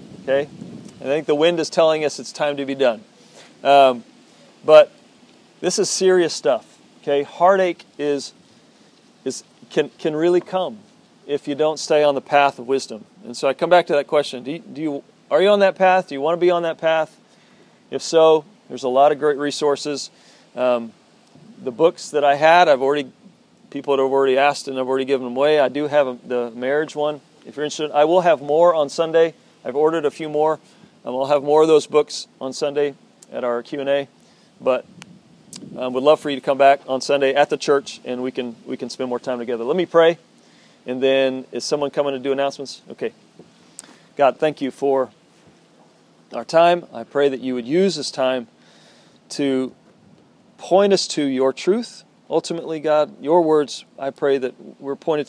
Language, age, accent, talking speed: English, 40-59, American, 200 wpm